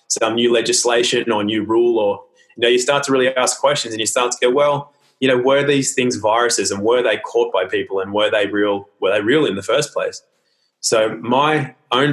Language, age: English, 20-39